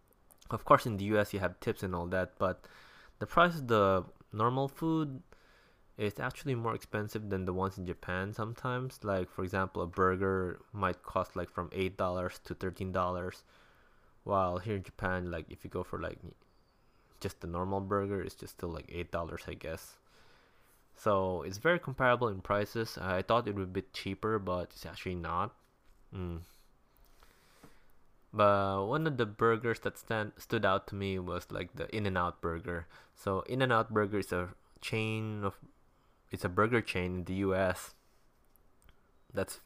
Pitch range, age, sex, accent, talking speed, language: 90-115 Hz, 20-39, male, Japanese, 165 wpm, English